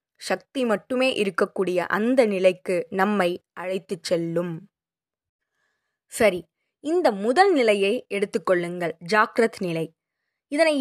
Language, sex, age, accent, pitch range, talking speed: Tamil, female, 20-39, native, 190-260 Hz, 90 wpm